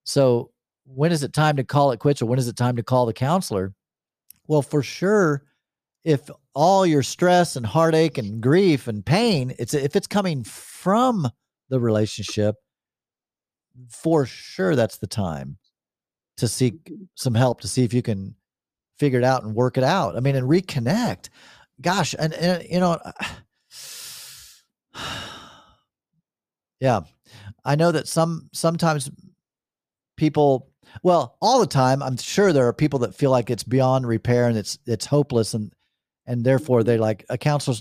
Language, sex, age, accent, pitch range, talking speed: English, male, 40-59, American, 120-160 Hz, 160 wpm